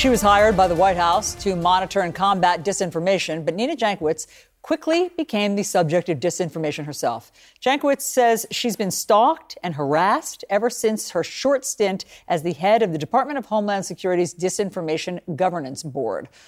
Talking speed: 165 wpm